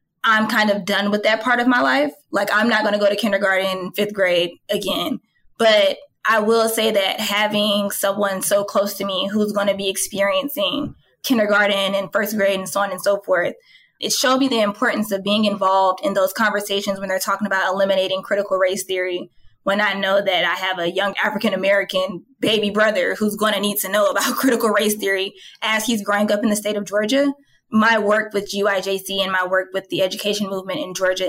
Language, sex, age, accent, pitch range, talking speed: English, female, 20-39, American, 195-215 Hz, 210 wpm